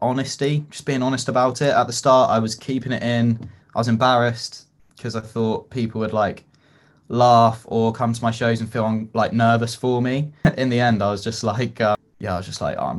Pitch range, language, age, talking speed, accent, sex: 100-115 Hz, English, 20-39, 225 wpm, British, male